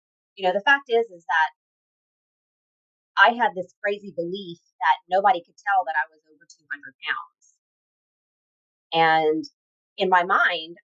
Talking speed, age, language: 145 wpm, 30-49, English